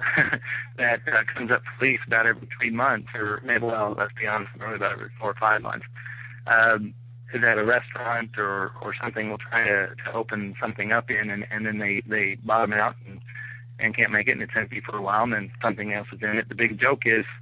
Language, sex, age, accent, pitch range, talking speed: English, male, 30-49, American, 110-125 Hz, 235 wpm